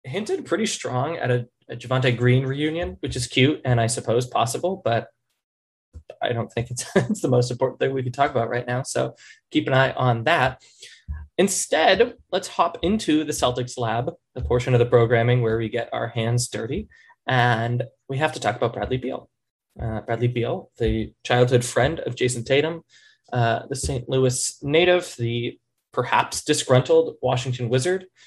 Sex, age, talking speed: male, 20-39, 175 wpm